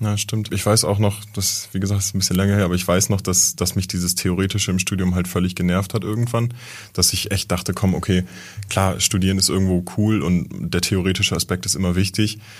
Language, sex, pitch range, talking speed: German, male, 85-100 Hz, 235 wpm